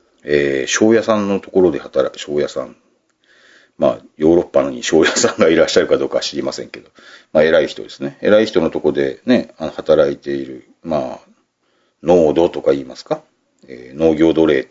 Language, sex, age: Japanese, male, 40-59